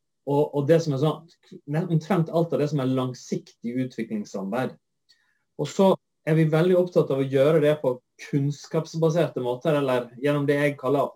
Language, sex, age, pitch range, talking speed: English, male, 30-49, 140-185 Hz, 155 wpm